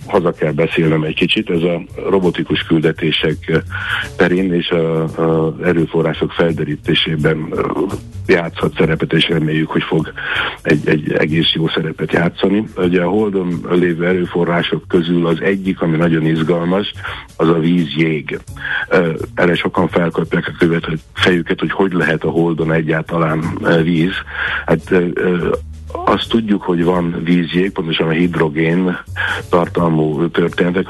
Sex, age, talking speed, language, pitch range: male, 60-79, 125 wpm, Hungarian, 80-90 Hz